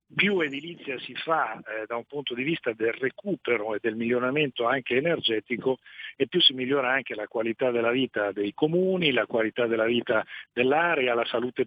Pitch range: 120-145 Hz